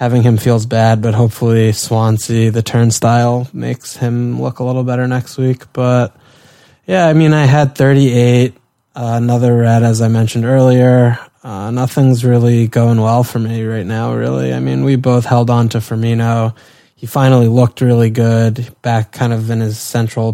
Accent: American